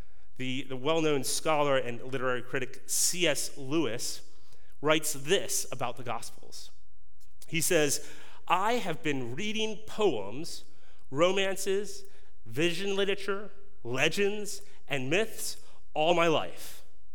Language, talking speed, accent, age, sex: English, 105 wpm, American, 30-49, male